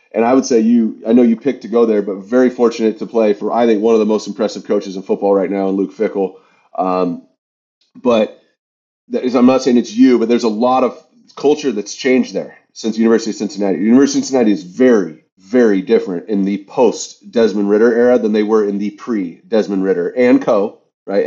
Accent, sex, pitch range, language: American, male, 110-135 Hz, English